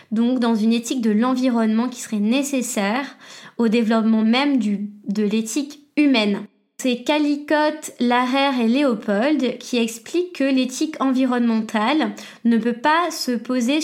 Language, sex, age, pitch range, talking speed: French, female, 20-39, 230-280 Hz, 135 wpm